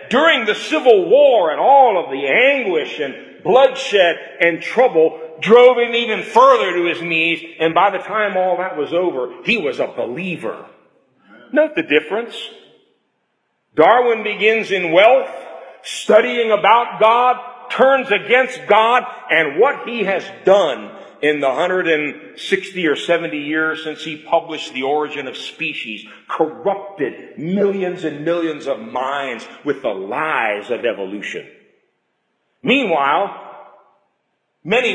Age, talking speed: 50-69, 135 wpm